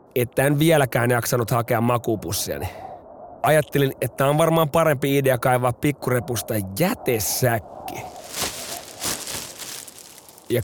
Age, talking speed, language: 30-49, 90 wpm, Finnish